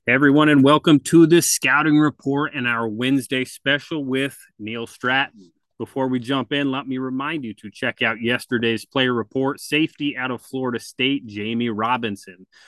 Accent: American